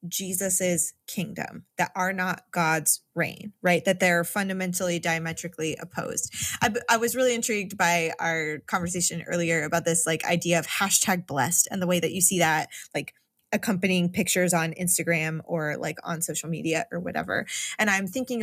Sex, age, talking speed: female, 20-39, 165 wpm